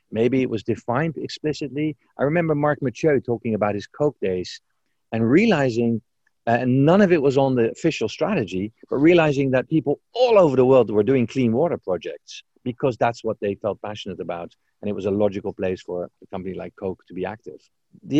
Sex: male